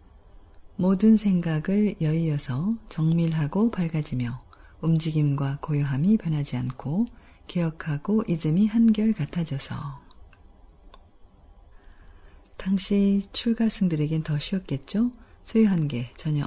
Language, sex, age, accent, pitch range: Korean, female, 40-59, native, 135-195 Hz